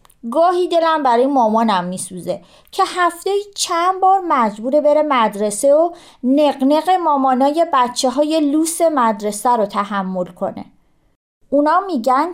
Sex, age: female, 30-49